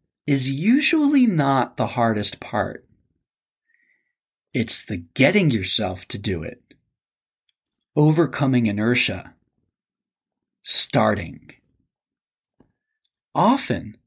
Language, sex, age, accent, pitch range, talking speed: English, male, 40-59, American, 120-175 Hz, 75 wpm